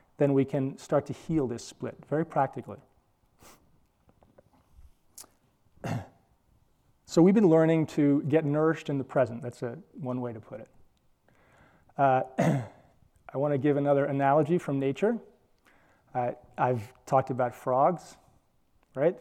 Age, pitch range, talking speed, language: 30-49, 120-155 Hz, 130 wpm, English